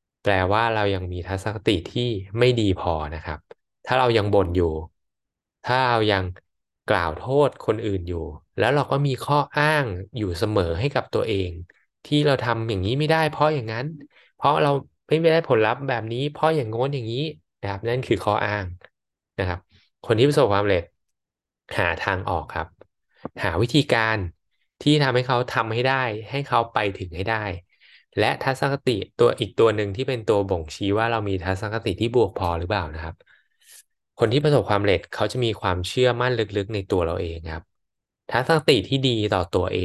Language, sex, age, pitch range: Thai, male, 20-39, 95-125 Hz